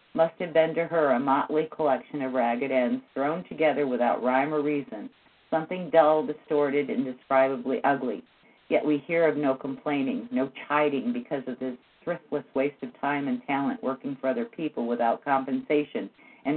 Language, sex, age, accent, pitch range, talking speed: English, female, 50-69, American, 135-160 Hz, 170 wpm